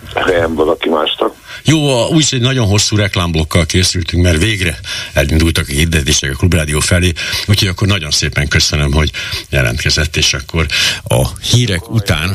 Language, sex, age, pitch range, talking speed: Hungarian, male, 60-79, 80-105 Hz, 140 wpm